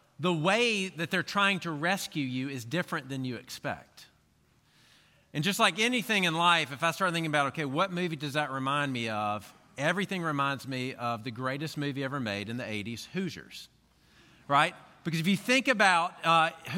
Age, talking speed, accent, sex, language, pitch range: 40-59, 185 wpm, American, male, English, 140-195 Hz